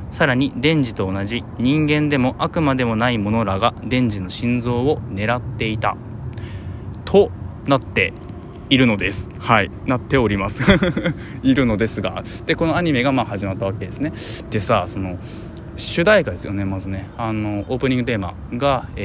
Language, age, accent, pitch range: Japanese, 20-39, native, 95-130 Hz